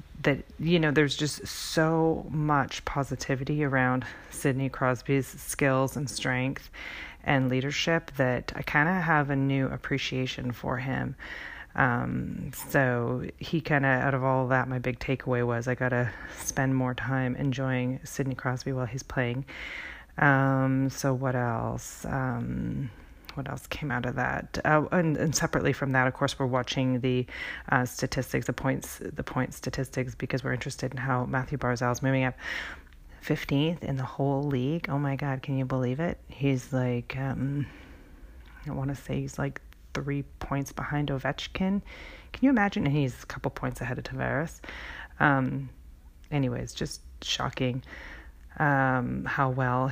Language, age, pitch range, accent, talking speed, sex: English, 30-49, 125-140 Hz, American, 160 wpm, female